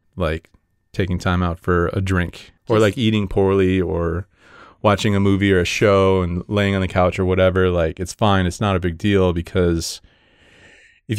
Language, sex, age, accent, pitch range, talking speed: English, male, 30-49, American, 90-105 Hz, 190 wpm